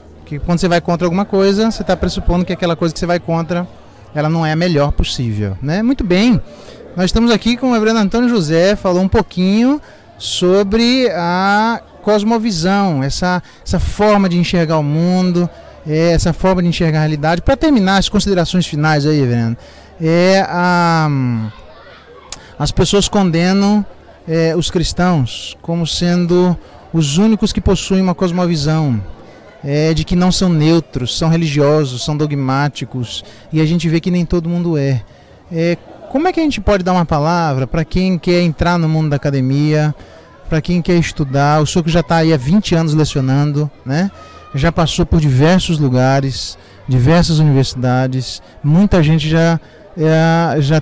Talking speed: 165 wpm